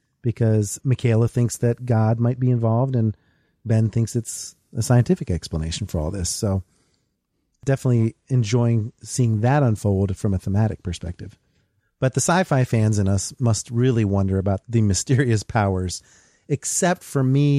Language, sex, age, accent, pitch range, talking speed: English, male, 40-59, American, 100-120 Hz, 150 wpm